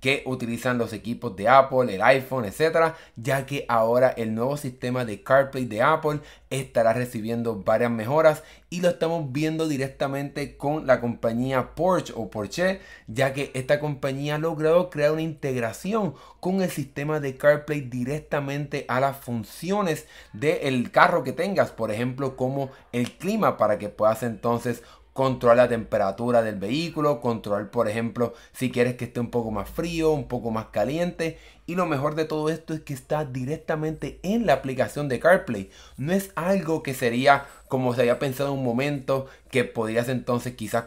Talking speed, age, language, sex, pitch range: 170 wpm, 30-49, Spanish, male, 120-145 Hz